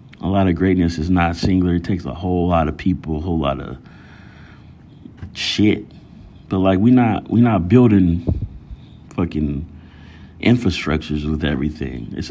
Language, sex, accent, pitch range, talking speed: English, male, American, 80-100 Hz, 150 wpm